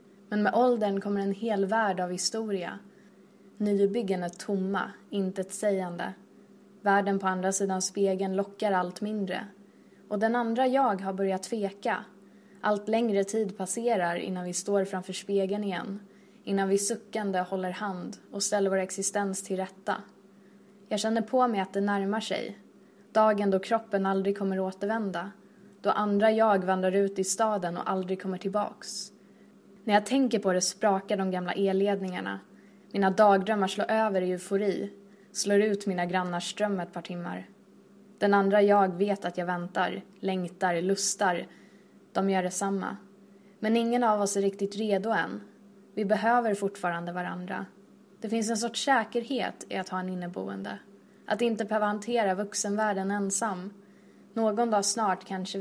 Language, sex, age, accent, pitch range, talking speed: Swedish, female, 20-39, native, 190-210 Hz, 155 wpm